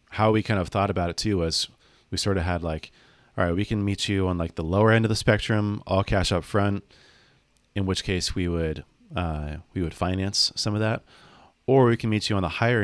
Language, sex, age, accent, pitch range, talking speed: English, male, 30-49, American, 85-100 Hz, 245 wpm